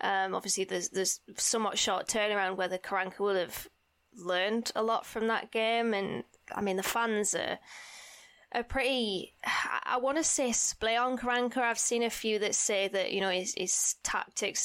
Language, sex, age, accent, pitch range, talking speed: English, female, 20-39, British, 185-215 Hz, 180 wpm